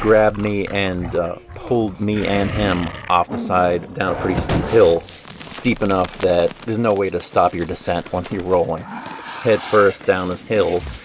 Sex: male